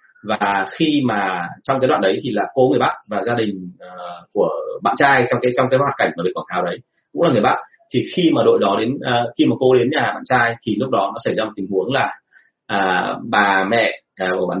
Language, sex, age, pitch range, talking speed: Vietnamese, male, 30-49, 115-175 Hz, 260 wpm